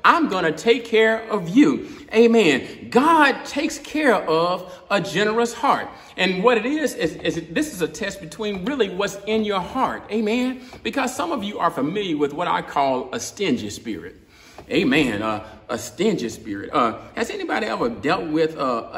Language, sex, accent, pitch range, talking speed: English, male, American, 170-250 Hz, 185 wpm